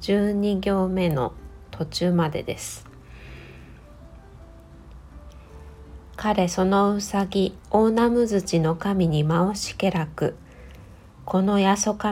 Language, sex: Japanese, female